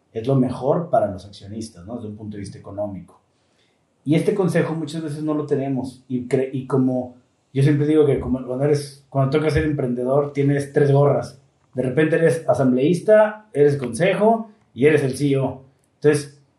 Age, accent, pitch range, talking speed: 30-49, Mexican, 125-155 Hz, 175 wpm